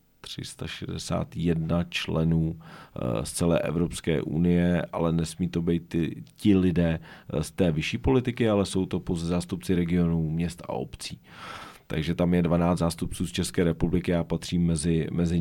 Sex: male